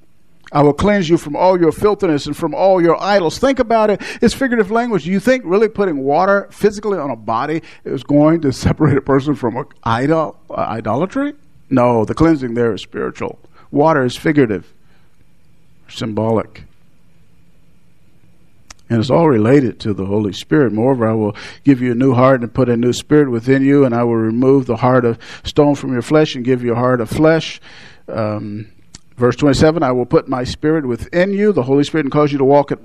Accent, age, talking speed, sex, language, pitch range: American, 50-69, 195 wpm, male, English, 120-160 Hz